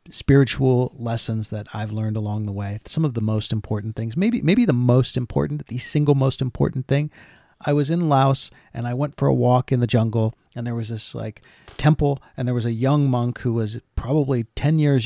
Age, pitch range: 40-59, 115-150 Hz